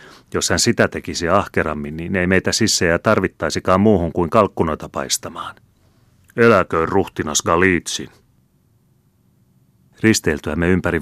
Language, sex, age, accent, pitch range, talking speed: Finnish, male, 30-49, native, 75-95 Hz, 105 wpm